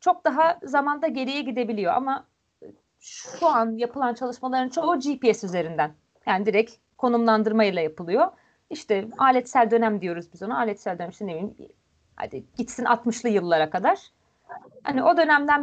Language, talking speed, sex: Turkish, 140 wpm, female